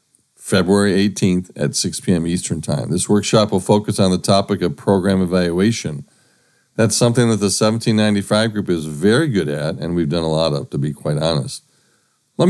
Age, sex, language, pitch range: 40-59, male, English, 90-120 Hz